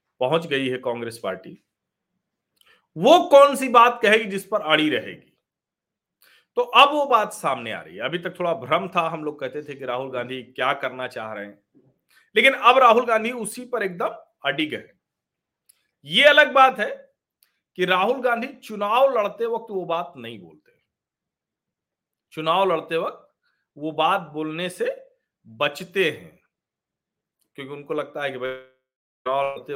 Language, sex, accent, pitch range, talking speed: Hindi, male, native, 150-230 Hz, 115 wpm